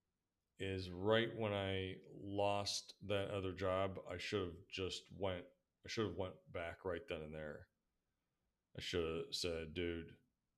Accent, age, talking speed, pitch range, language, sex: American, 30-49, 155 wpm, 85-100 Hz, English, male